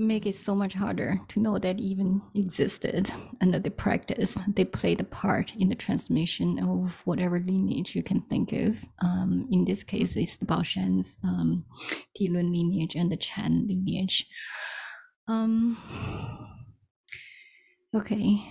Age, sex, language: 30-49, female, English